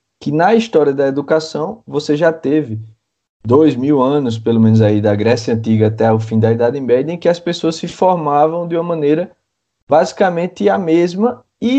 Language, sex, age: Portuguese, male, 20-39